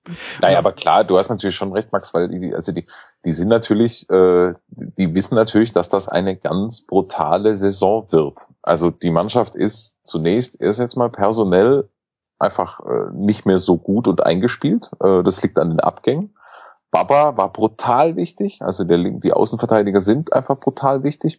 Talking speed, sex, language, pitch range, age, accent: 175 wpm, male, German, 100-125 Hz, 30-49, German